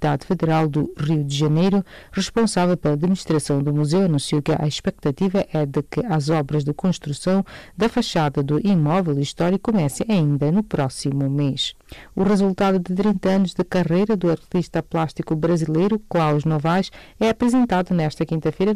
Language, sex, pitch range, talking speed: English, female, 150-195 Hz, 155 wpm